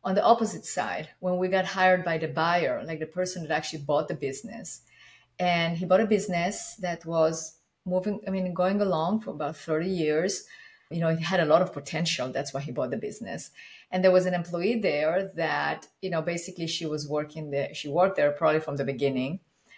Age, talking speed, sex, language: 30-49, 210 wpm, female, English